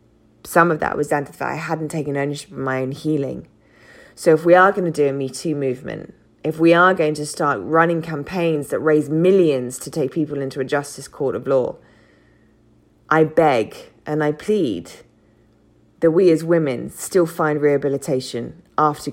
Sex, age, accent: female, 20-39, British